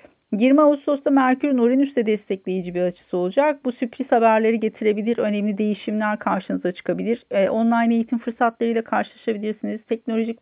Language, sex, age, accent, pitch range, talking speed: Turkish, female, 40-59, native, 200-250 Hz, 120 wpm